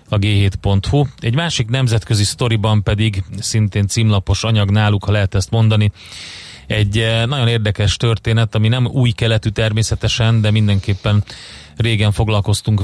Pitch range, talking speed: 100-115 Hz, 125 wpm